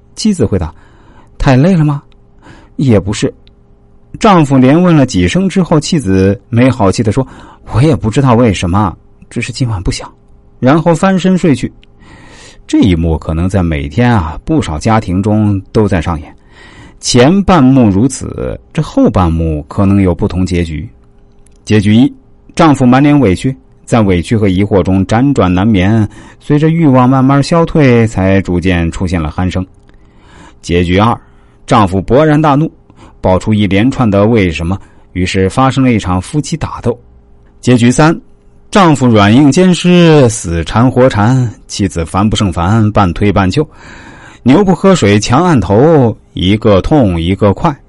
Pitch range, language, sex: 95-135 Hz, Chinese, male